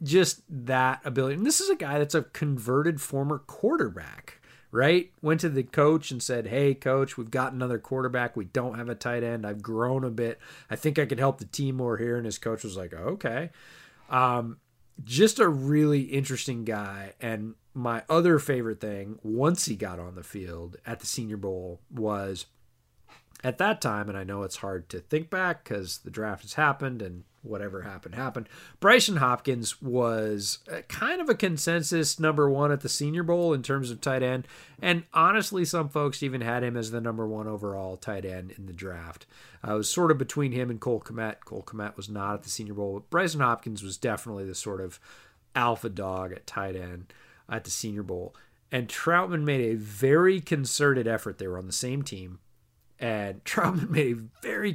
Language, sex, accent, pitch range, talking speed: English, male, American, 105-145 Hz, 200 wpm